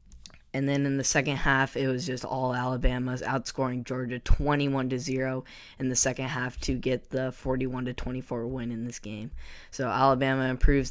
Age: 10-29